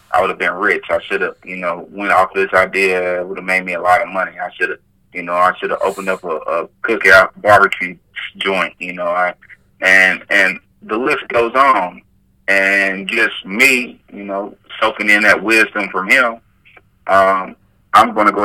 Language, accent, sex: English, American, male